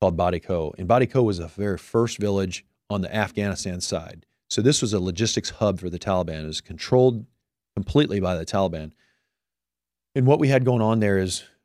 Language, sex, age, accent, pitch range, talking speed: English, male, 40-59, American, 95-115 Hz, 185 wpm